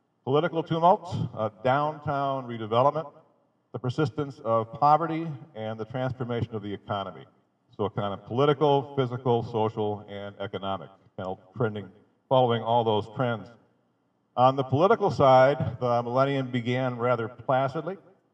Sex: male